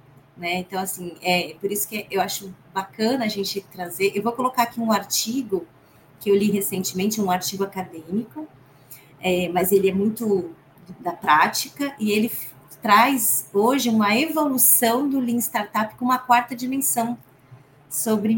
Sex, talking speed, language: female, 155 wpm, Portuguese